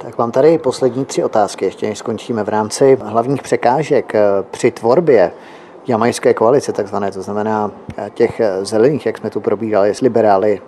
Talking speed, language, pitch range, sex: 150 wpm, Czech, 110-130 Hz, male